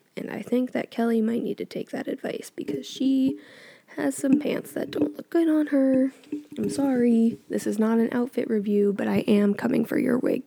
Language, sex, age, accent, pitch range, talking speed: English, female, 10-29, American, 225-275 Hz, 210 wpm